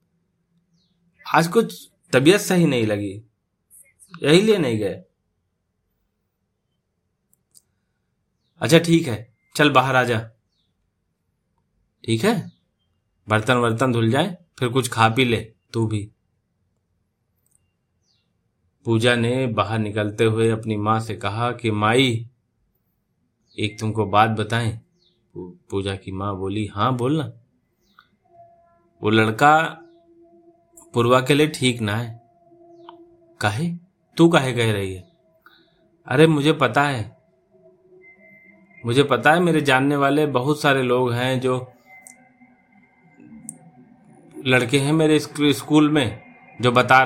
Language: Hindi